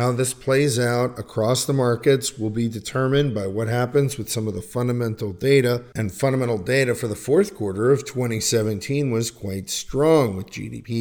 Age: 40-59